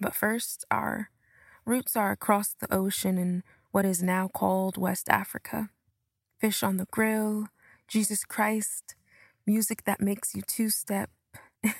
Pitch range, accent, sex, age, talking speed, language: 195-215 Hz, American, female, 20-39, 130 wpm, English